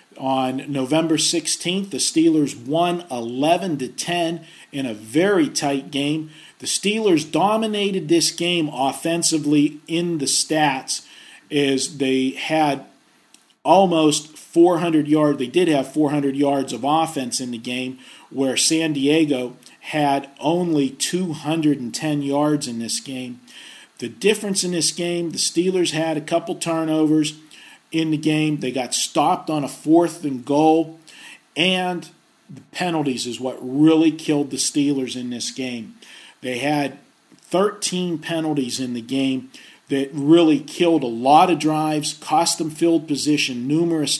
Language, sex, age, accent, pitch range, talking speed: English, male, 40-59, American, 135-165 Hz, 140 wpm